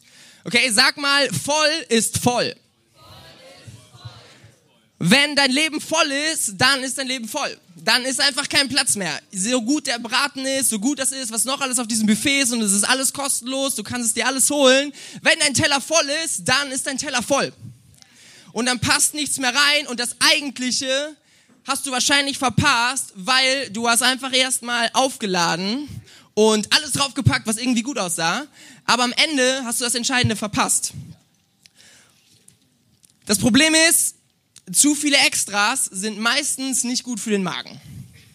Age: 20-39